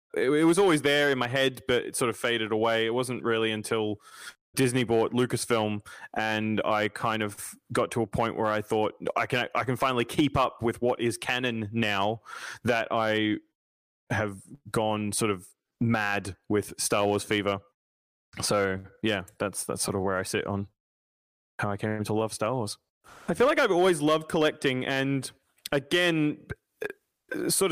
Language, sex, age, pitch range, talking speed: English, male, 20-39, 110-130 Hz, 175 wpm